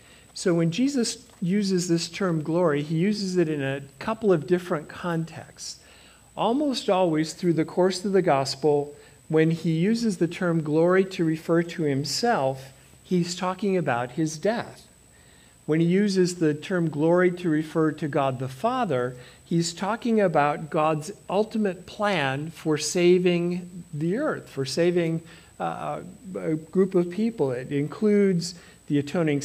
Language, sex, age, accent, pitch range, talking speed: English, male, 50-69, American, 150-190 Hz, 145 wpm